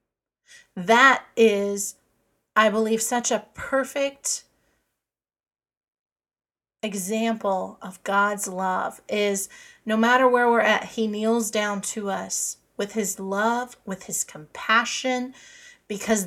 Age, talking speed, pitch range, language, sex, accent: 30-49, 105 wpm, 200-250 Hz, English, female, American